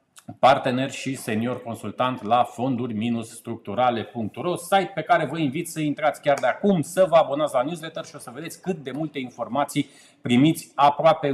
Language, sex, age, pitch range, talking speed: Romanian, male, 30-49, 125-150 Hz, 170 wpm